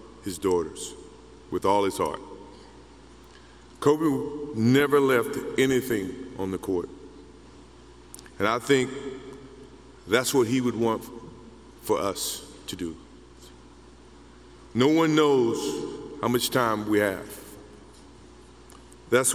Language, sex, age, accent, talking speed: English, male, 50-69, American, 105 wpm